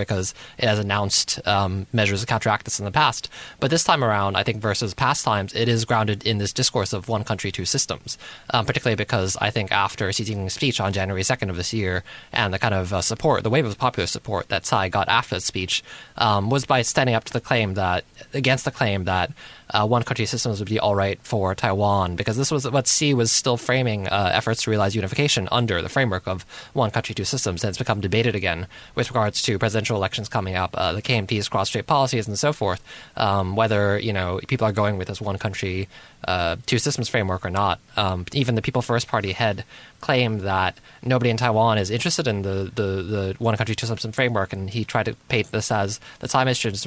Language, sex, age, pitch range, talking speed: English, male, 20-39, 100-120 Hz, 230 wpm